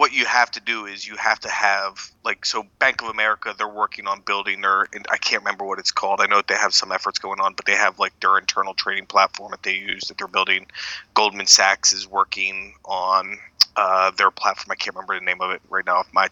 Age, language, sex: 30-49, English, male